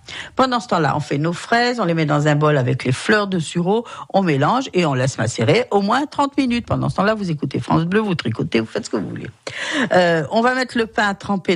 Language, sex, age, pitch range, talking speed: French, female, 50-69, 150-210 Hz, 260 wpm